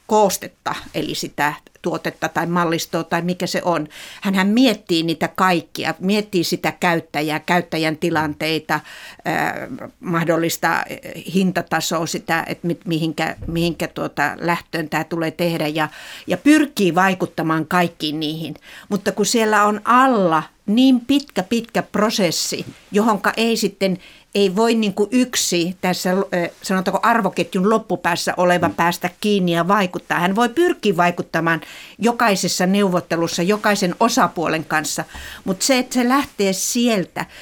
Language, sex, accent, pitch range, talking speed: Finnish, female, native, 170-210 Hz, 125 wpm